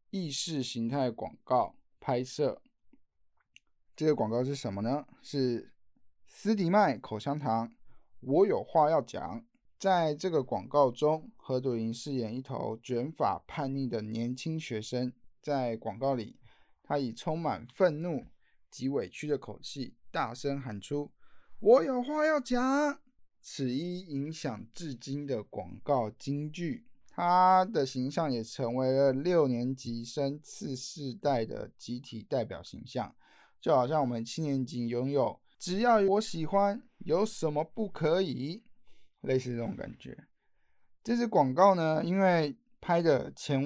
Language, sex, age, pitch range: Chinese, male, 20-39, 120-160 Hz